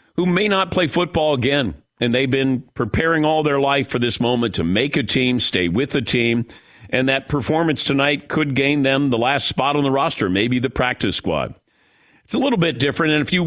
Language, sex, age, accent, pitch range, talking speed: English, male, 50-69, American, 110-150 Hz, 220 wpm